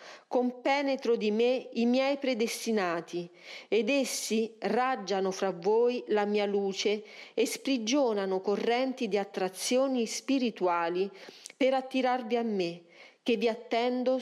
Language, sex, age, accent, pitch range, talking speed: Italian, female, 40-59, native, 190-250 Hz, 115 wpm